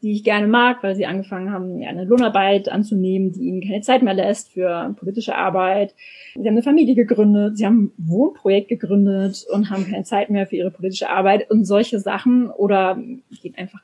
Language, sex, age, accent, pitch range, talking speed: German, female, 20-39, German, 195-235 Hz, 200 wpm